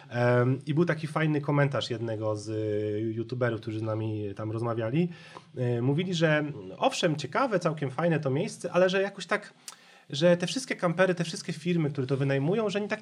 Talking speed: 175 wpm